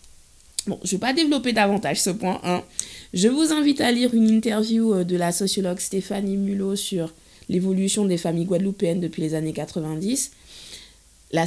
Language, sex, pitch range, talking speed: French, female, 165-205 Hz, 165 wpm